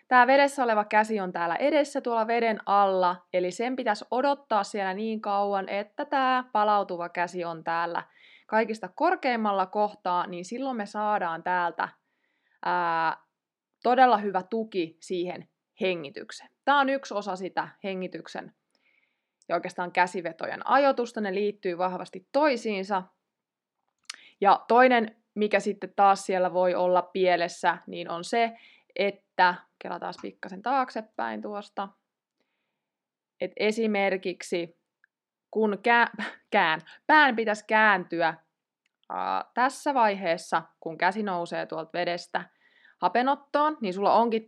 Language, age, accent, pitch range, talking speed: Finnish, 20-39, native, 180-230 Hz, 120 wpm